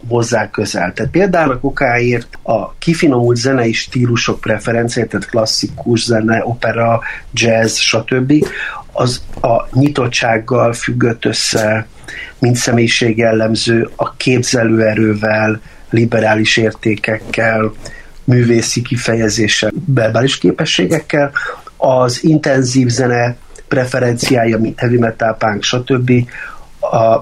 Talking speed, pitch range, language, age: 90 wpm, 115-135 Hz, Hungarian, 50-69